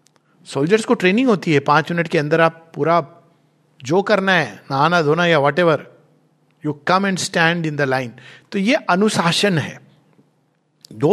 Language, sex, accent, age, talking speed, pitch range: Hindi, male, native, 60-79, 160 wpm, 145-200 Hz